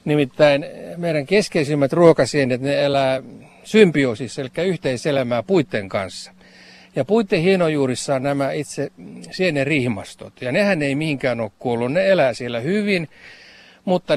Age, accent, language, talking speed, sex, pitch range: 60-79, native, Finnish, 125 wpm, male, 135-180 Hz